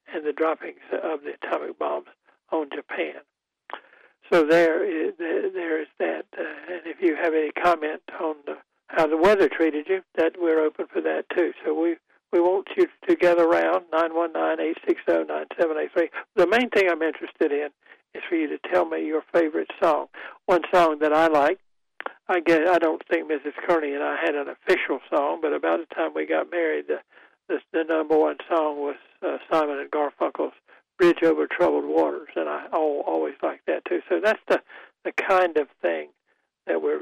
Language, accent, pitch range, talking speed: English, American, 155-185 Hz, 200 wpm